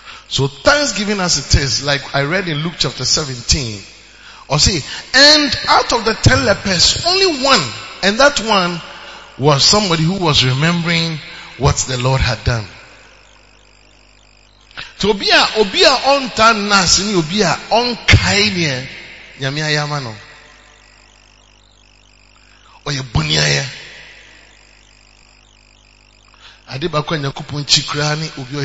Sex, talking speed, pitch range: male, 70 wpm, 115-165 Hz